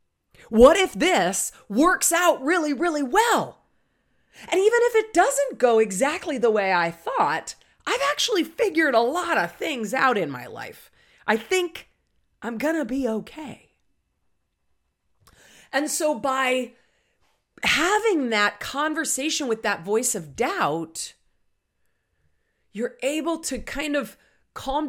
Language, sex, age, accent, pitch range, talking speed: English, female, 40-59, American, 205-320 Hz, 130 wpm